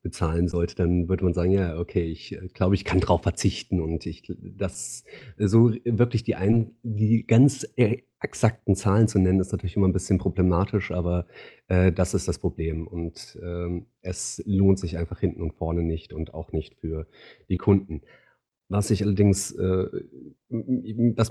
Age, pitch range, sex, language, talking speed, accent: 40-59, 90-105 Hz, male, German, 170 wpm, German